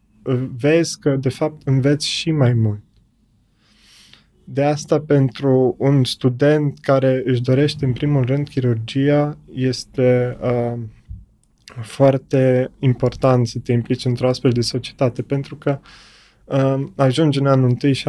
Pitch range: 125-145 Hz